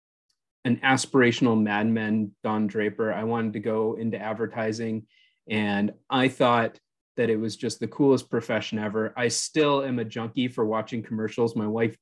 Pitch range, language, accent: 110-140 Hz, English, American